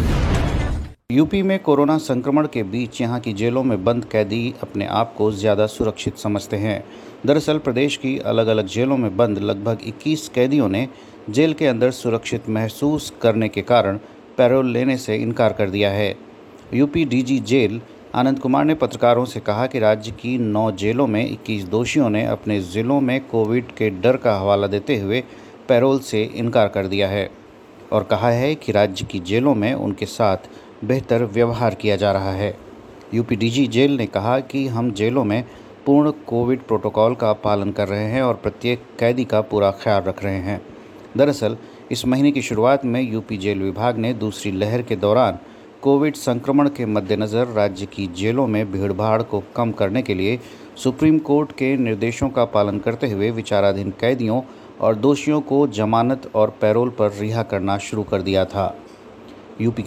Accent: Indian